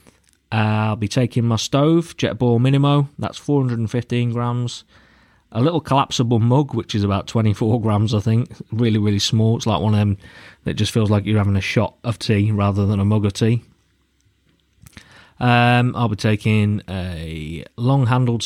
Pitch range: 100-120 Hz